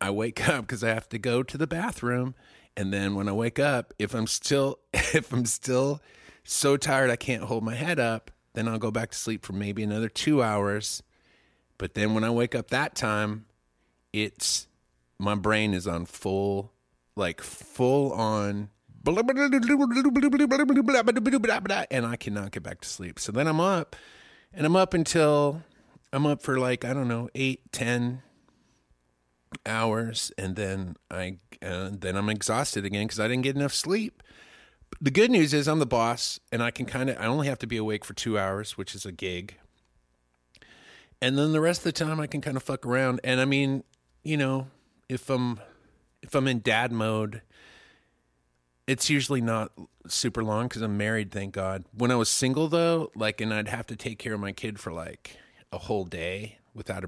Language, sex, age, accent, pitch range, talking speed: English, male, 30-49, American, 100-135 Hz, 190 wpm